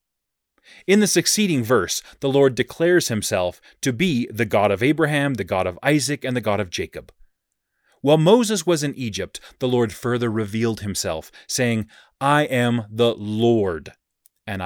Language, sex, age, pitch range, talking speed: English, male, 30-49, 100-135 Hz, 160 wpm